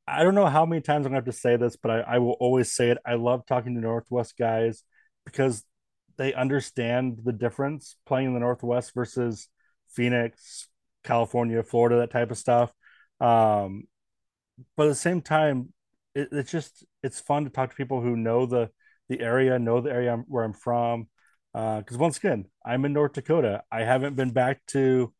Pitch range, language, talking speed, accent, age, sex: 120-140 Hz, English, 200 wpm, American, 30-49, male